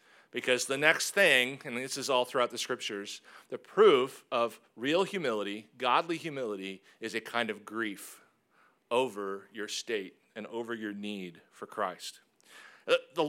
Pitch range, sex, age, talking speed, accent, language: 115-145 Hz, male, 40-59, 150 wpm, American, English